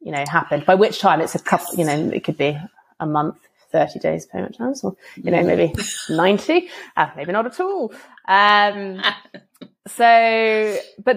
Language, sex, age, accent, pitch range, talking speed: English, female, 20-39, British, 155-220 Hz, 185 wpm